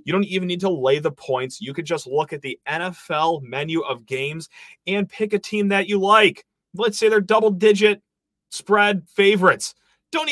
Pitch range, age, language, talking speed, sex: 140-200 Hz, 30-49, English, 185 wpm, male